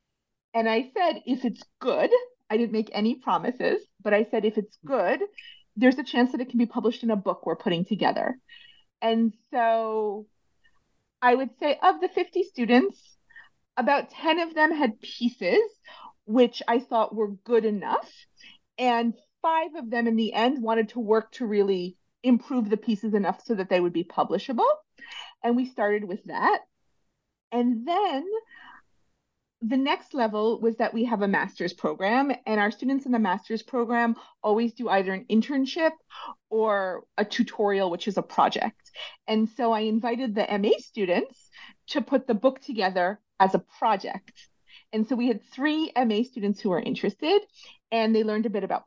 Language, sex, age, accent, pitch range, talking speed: English, female, 40-59, American, 210-265 Hz, 175 wpm